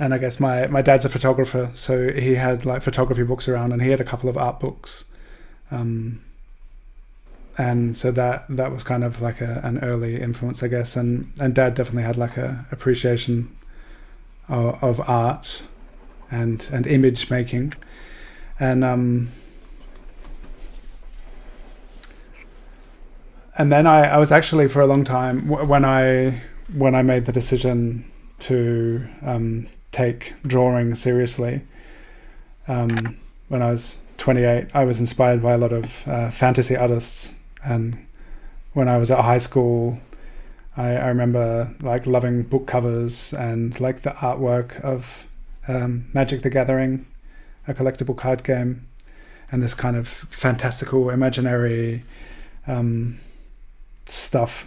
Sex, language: male, English